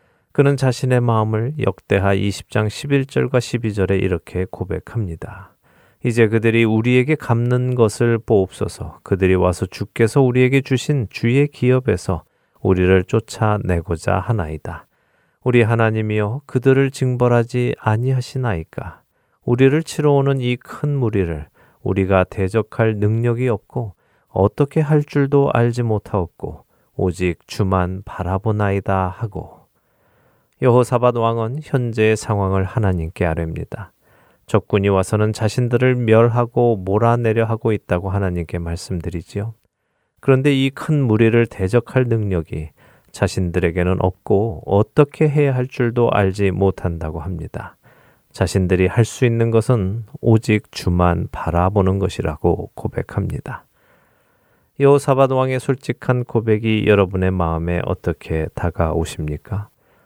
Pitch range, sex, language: 95-125 Hz, male, Korean